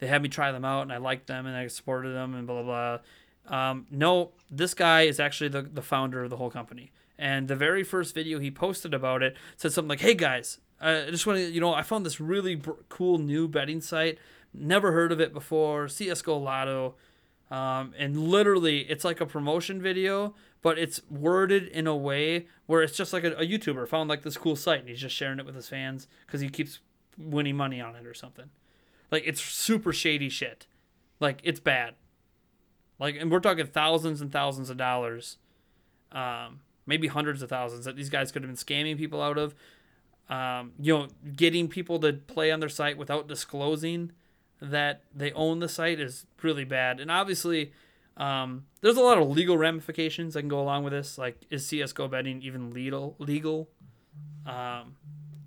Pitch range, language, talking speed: 135-165 Hz, English, 200 wpm